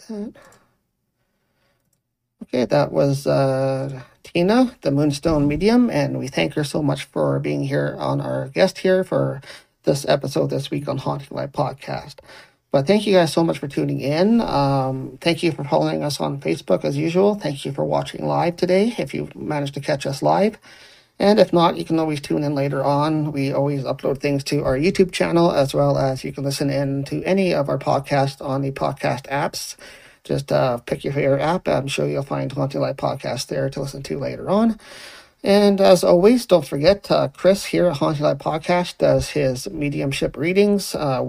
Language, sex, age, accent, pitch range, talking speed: English, male, 40-59, American, 135-180 Hz, 190 wpm